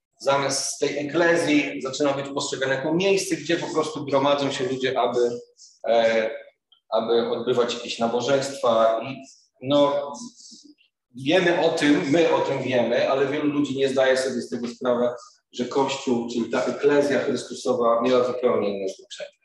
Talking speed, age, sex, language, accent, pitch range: 150 wpm, 40-59, male, Polish, native, 130-165 Hz